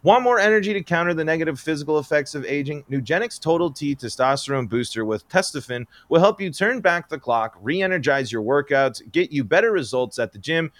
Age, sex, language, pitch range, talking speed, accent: 30-49, male, English, 120-155 Hz, 195 wpm, American